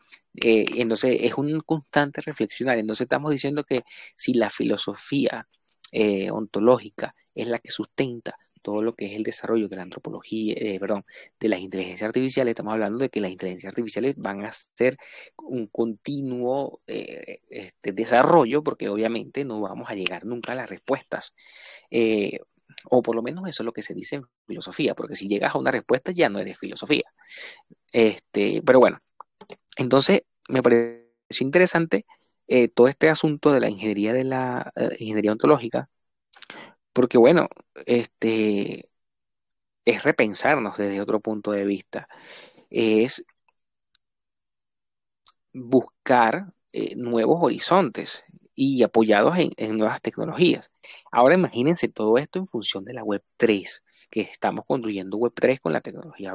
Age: 30-49